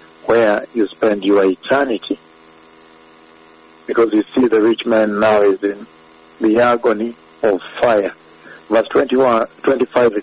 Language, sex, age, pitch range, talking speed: English, male, 60-79, 80-115 Hz, 115 wpm